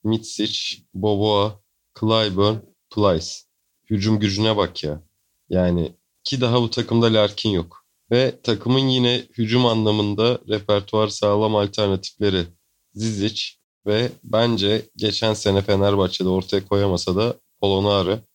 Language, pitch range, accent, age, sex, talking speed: Turkish, 95-115 Hz, native, 30-49, male, 110 wpm